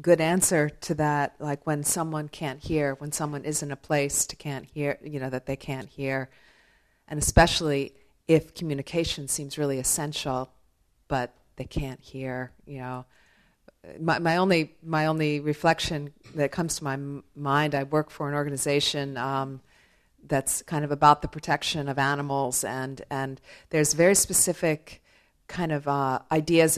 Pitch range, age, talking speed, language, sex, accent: 135-155 Hz, 40-59, 160 wpm, English, female, American